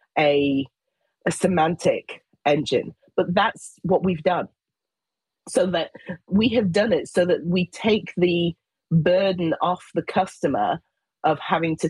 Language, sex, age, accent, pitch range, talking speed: English, female, 30-49, British, 145-180 Hz, 135 wpm